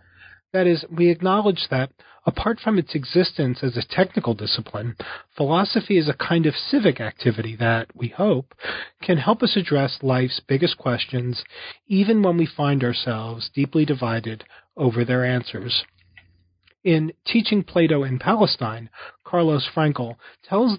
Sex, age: male, 40-59